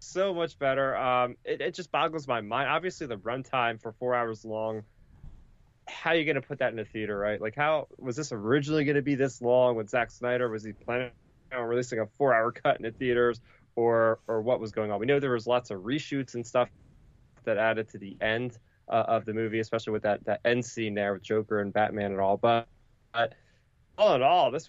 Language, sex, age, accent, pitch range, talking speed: English, male, 20-39, American, 110-135 Hz, 230 wpm